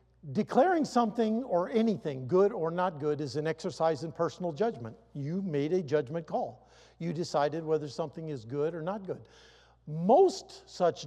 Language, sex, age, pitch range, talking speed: English, male, 50-69, 130-190 Hz, 165 wpm